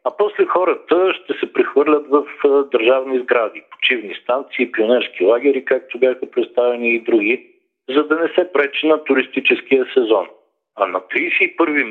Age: 50-69